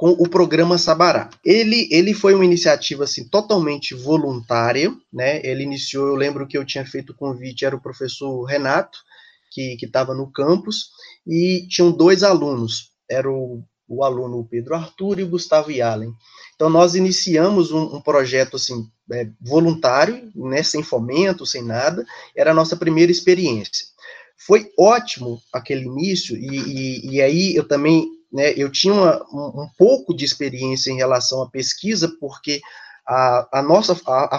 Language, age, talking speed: Portuguese, 20-39, 160 wpm